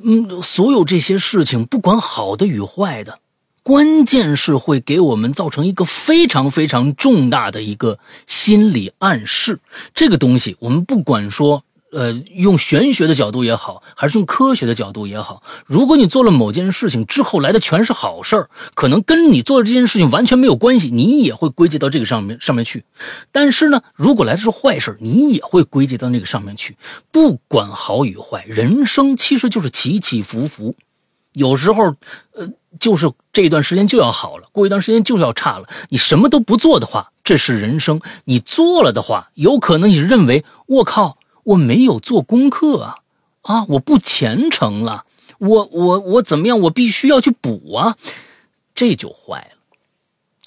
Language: Chinese